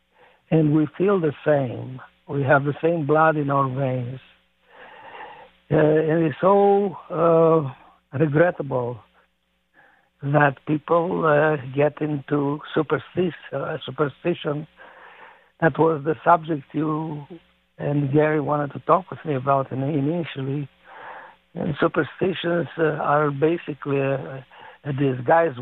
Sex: male